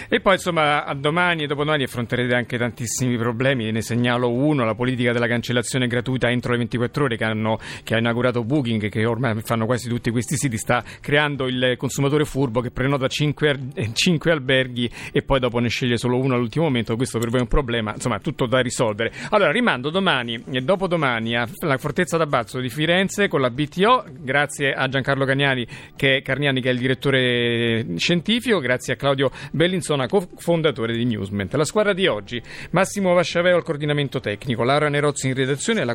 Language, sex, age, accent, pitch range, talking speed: Italian, male, 40-59, native, 120-155 Hz, 185 wpm